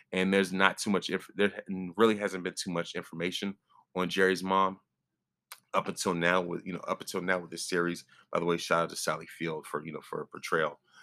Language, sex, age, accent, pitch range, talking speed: English, male, 30-49, American, 75-95 Hz, 225 wpm